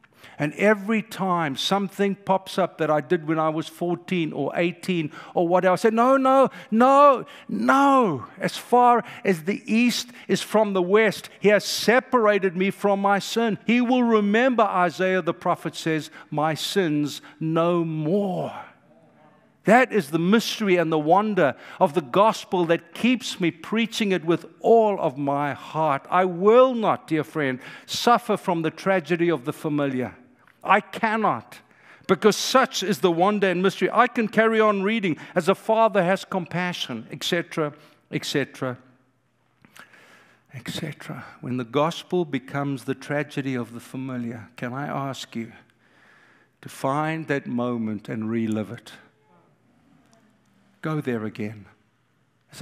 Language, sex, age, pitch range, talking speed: English, male, 50-69, 140-205 Hz, 145 wpm